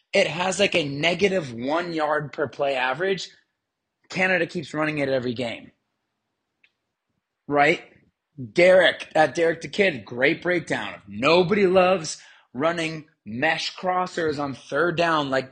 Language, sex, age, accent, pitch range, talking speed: English, male, 30-49, American, 140-190 Hz, 130 wpm